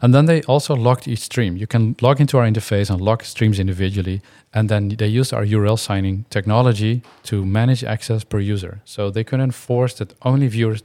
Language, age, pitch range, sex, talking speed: Dutch, 40-59, 100-120 Hz, male, 205 wpm